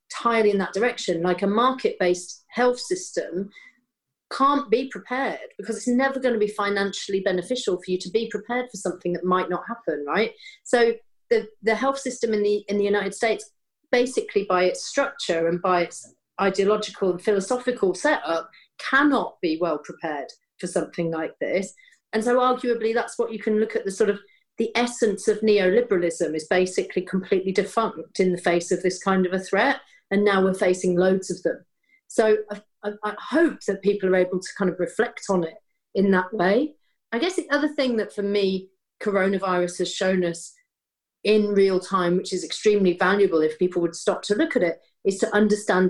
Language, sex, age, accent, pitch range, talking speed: English, female, 40-59, British, 185-240 Hz, 190 wpm